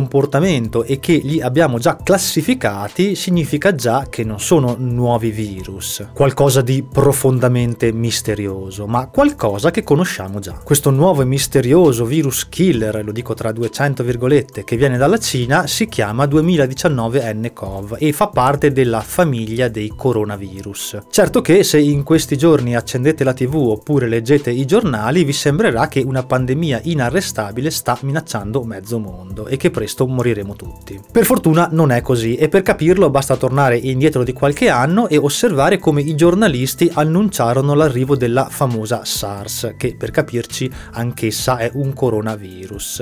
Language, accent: Italian, native